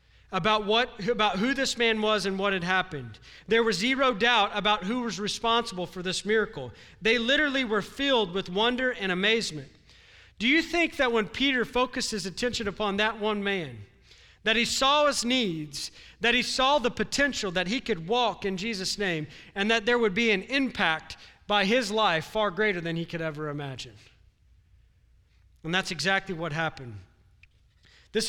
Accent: American